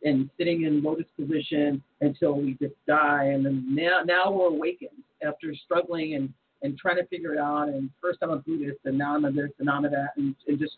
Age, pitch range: 40-59, 145-185 Hz